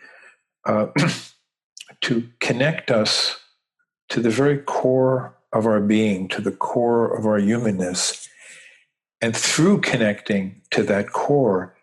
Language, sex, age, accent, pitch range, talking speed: English, male, 50-69, American, 105-125 Hz, 115 wpm